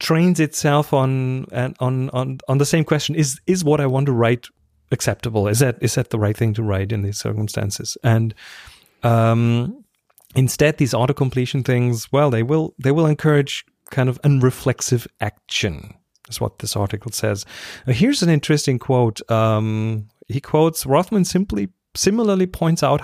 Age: 30-49